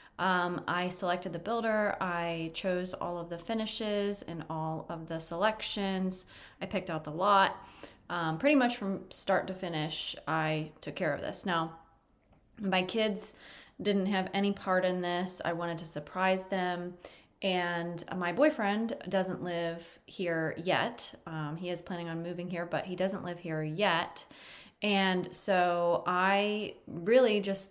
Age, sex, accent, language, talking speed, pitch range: 20-39, female, American, English, 155 wpm, 165-195 Hz